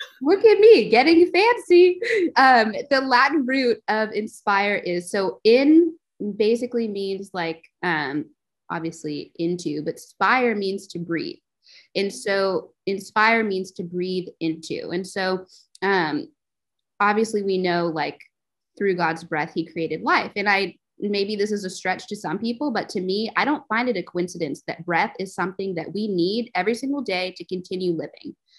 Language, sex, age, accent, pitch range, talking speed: English, female, 20-39, American, 185-265 Hz, 160 wpm